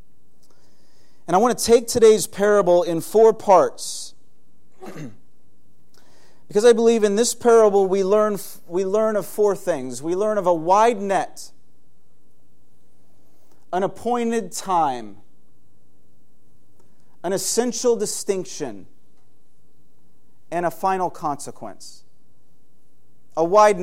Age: 30-49